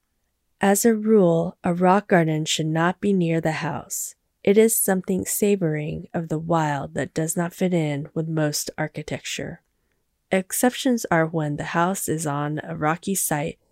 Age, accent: 10-29, American